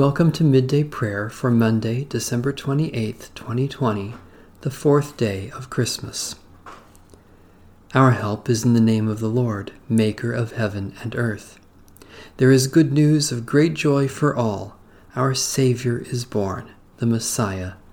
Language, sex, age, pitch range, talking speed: English, male, 40-59, 100-125 Hz, 145 wpm